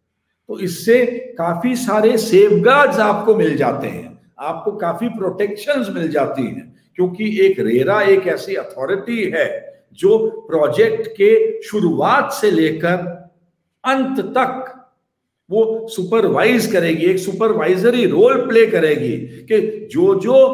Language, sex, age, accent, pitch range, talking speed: English, male, 60-79, Indian, 180-245 Hz, 115 wpm